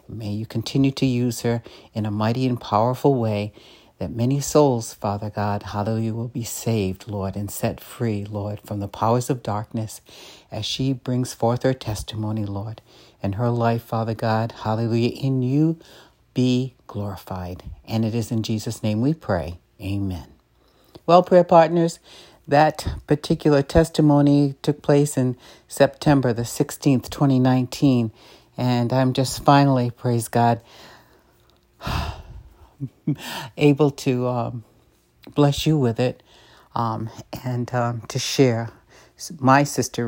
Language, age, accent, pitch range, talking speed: English, 60-79, American, 110-135 Hz, 135 wpm